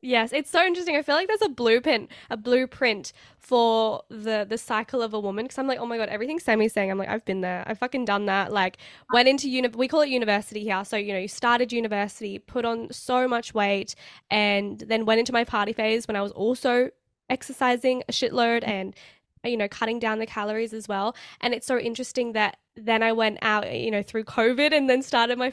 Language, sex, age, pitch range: English, female, 10-29, 215-260 Hz